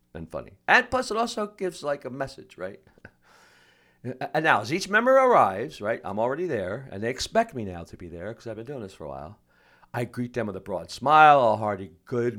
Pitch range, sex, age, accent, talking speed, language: 95-145 Hz, male, 50-69, American, 230 wpm, English